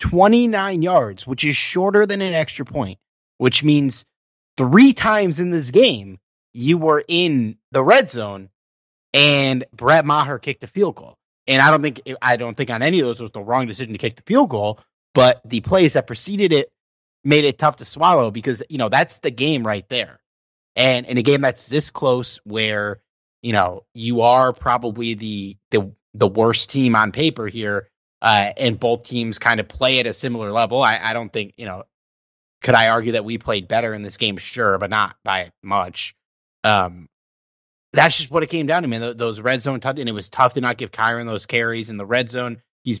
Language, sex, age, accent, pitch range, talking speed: English, male, 30-49, American, 105-140 Hz, 210 wpm